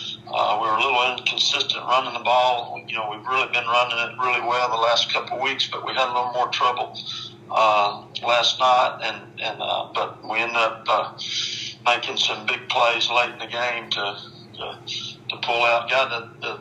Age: 50-69